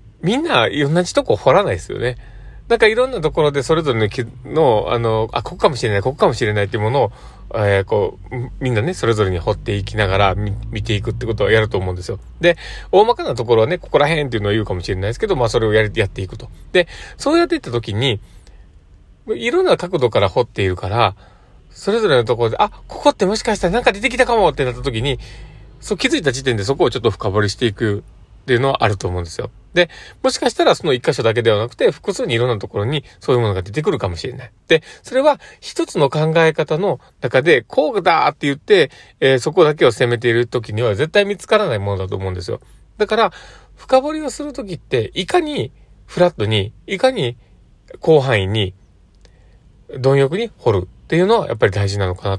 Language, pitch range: Japanese, 105-160 Hz